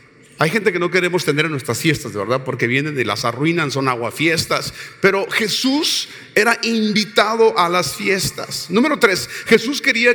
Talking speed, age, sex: 170 wpm, 40-59, male